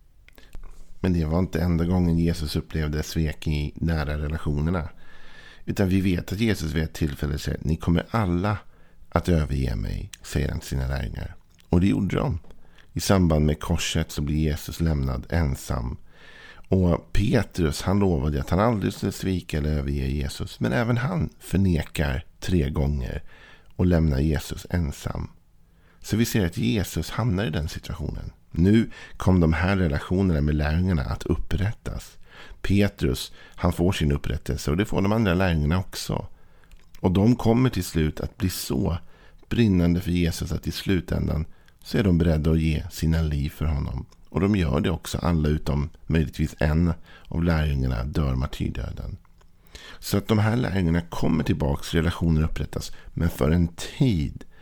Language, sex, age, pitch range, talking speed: Swedish, male, 50-69, 75-90 Hz, 165 wpm